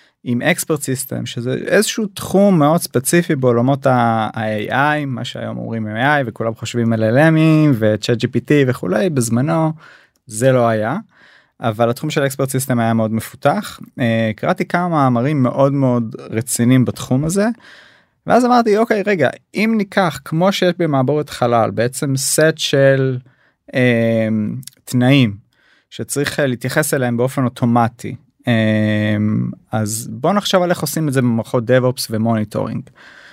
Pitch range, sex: 120-155 Hz, male